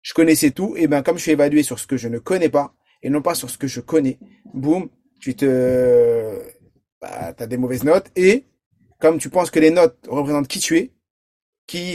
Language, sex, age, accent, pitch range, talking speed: French, male, 30-49, French, 140-195 Hz, 220 wpm